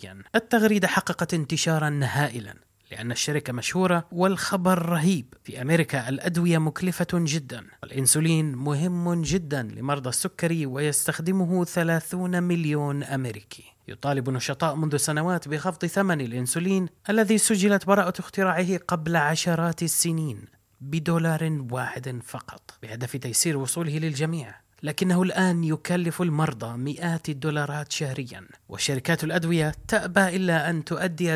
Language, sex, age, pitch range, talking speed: Arabic, male, 30-49, 135-175 Hz, 110 wpm